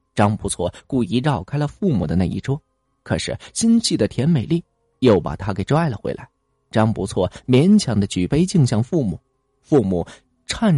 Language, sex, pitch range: Chinese, male, 105-165 Hz